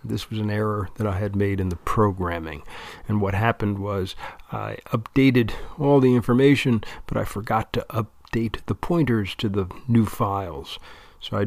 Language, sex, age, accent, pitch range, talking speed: English, male, 40-59, American, 100-130 Hz, 175 wpm